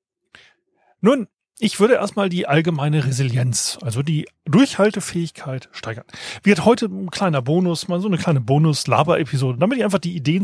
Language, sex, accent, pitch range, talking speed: German, male, German, 140-210 Hz, 150 wpm